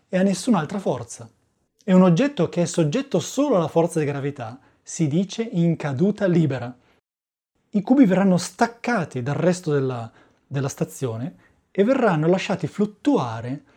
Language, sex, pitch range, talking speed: Italian, male, 140-185 Hz, 145 wpm